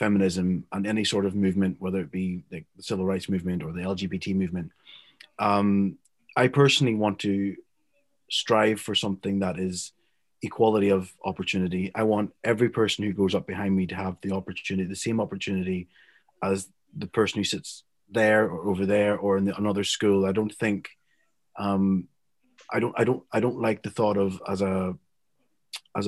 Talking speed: 175 wpm